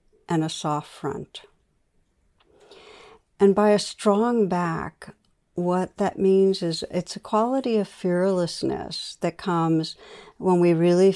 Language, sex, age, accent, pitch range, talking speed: English, female, 60-79, American, 160-180 Hz, 125 wpm